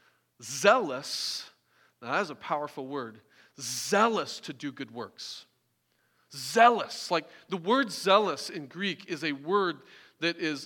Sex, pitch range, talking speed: male, 150-205 Hz, 130 wpm